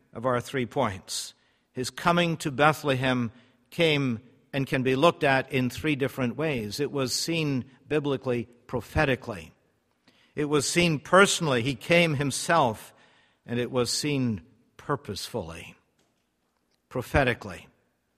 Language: English